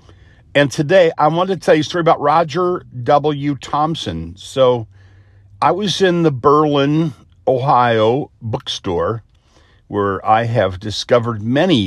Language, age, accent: English, 50-69, American